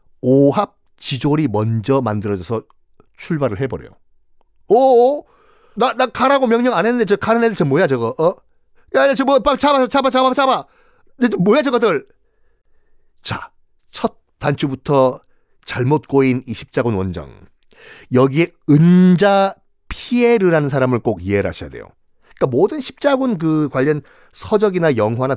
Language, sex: Korean, male